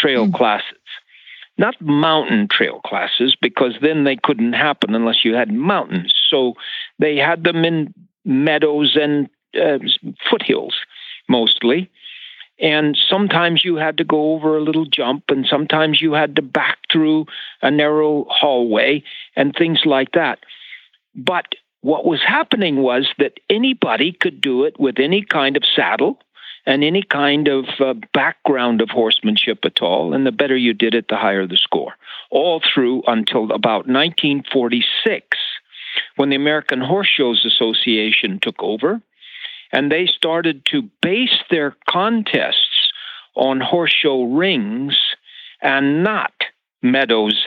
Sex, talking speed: male, 140 wpm